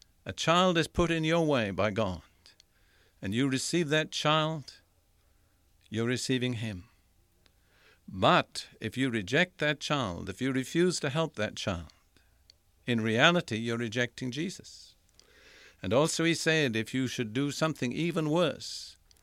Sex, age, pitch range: male, 60-79, 95-150 Hz